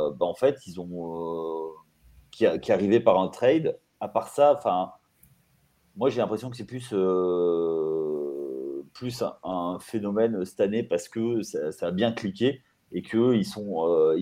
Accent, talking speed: French, 185 wpm